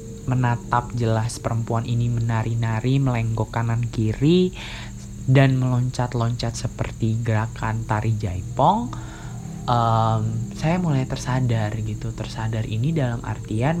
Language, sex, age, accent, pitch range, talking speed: Indonesian, male, 20-39, native, 115-135 Hz, 95 wpm